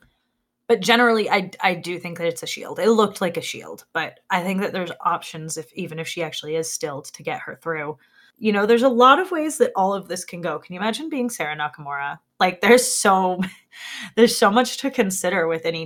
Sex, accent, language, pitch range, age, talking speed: female, American, English, 160-235 Hz, 20-39, 235 wpm